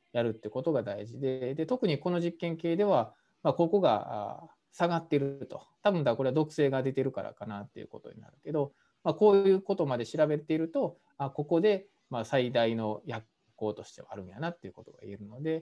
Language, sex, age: Japanese, male, 20-39